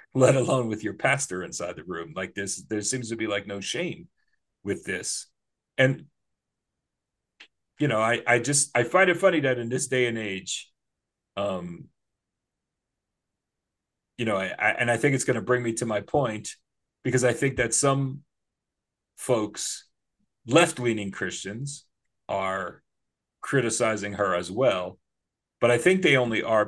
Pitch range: 105-130 Hz